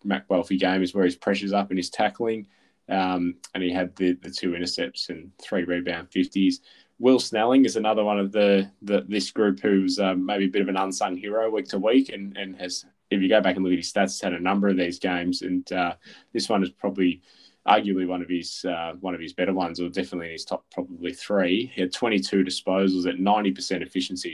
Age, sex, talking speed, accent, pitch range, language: 10-29, male, 230 wpm, Australian, 90-100 Hz, English